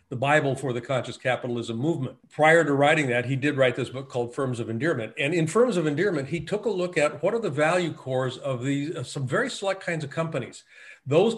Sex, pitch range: male, 130-170 Hz